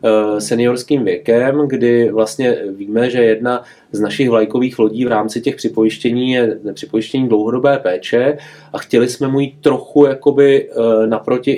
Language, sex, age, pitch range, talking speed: Czech, male, 30-49, 110-130 Hz, 135 wpm